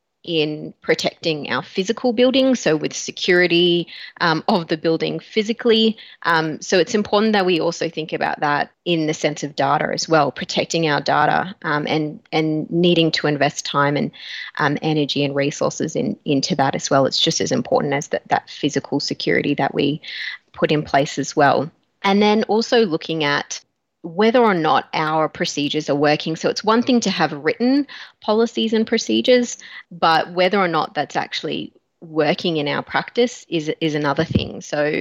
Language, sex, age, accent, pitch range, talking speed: English, female, 20-39, Australian, 145-180 Hz, 175 wpm